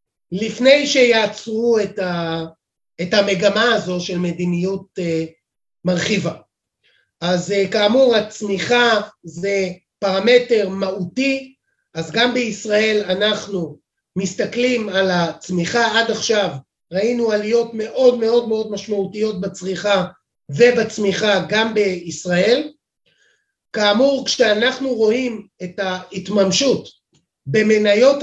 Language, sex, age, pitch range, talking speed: Hebrew, male, 30-49, 190-245 Hz, 85 wpm